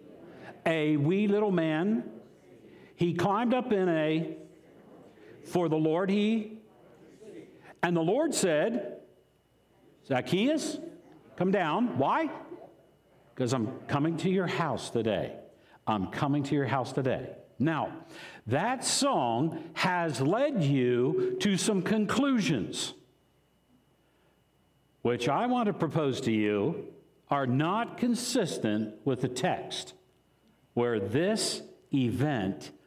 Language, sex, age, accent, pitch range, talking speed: English, male, 60-79, American, 145-225 Hz, 110 wpm